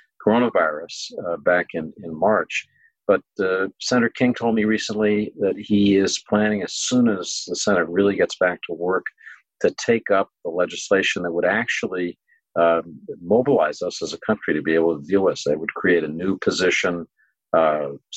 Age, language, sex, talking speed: 50-69, English, male, 185 wpm